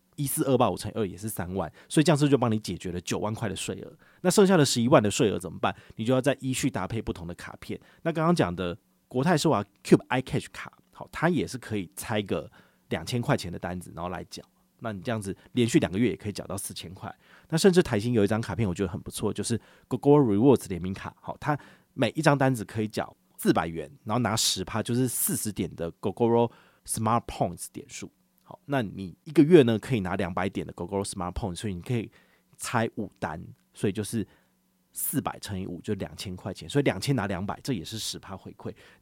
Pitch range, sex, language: 95-135 Hz, male, Chinese